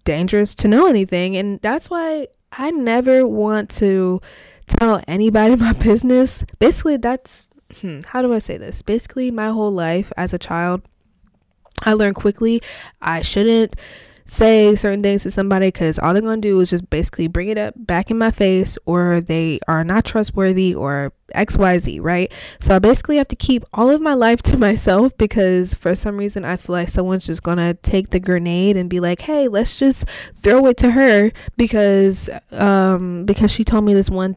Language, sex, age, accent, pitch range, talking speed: English, female, 20-39, American, 185-255 Hz, 185 wpm